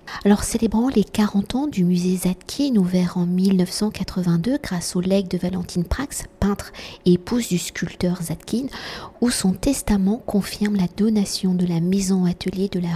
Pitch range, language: 180-215 Hz, French